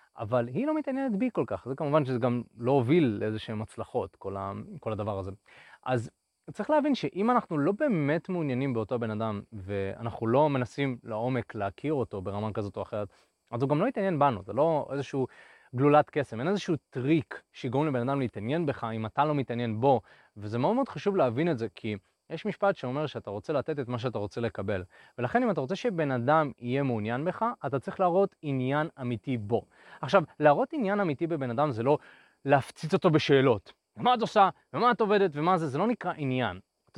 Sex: male